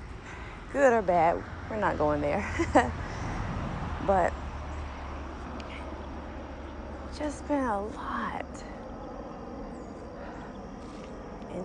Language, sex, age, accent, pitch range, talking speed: English, female, 30-49, American, 150-190 Hz, 65 wpm